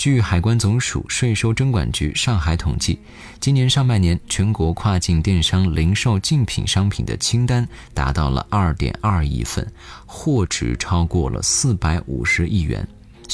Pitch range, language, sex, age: 80-110 Hz, Chinese, male, 20-39